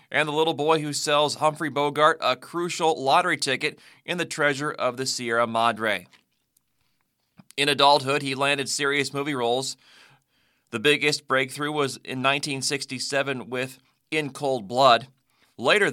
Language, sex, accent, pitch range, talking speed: English, male, American, 125-145 Hz, 140 wpm